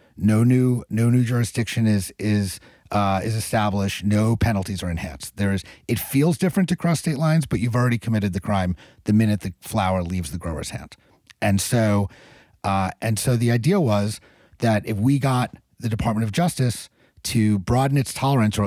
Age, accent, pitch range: 40-59, American, 95-120 Hz